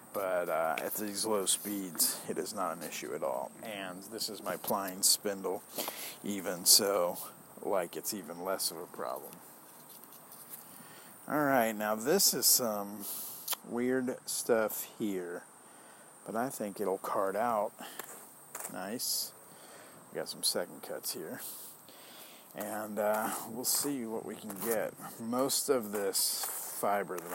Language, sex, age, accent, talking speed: English, male, 50-69, American, 135 wpm